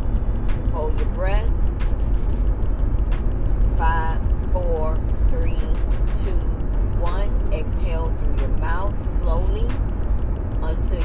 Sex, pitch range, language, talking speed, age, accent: female, 85-100 Hz, English, 75 wpm, 40-59, American